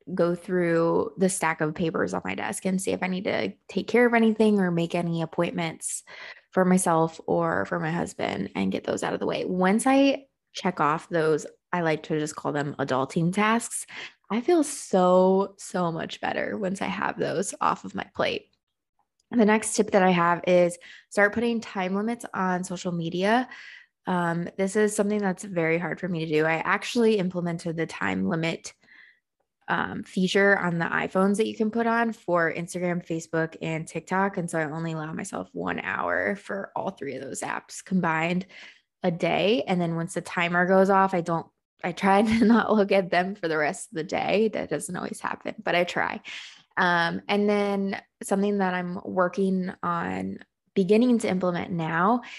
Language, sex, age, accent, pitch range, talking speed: English, female, 20-39, American, 165-205 Hz, 190 wpm